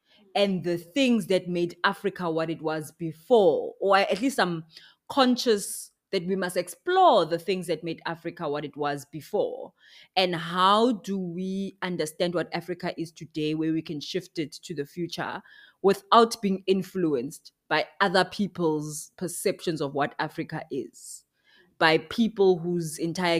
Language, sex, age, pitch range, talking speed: English, female, 20-39, 155-190 Hz, 155 wpm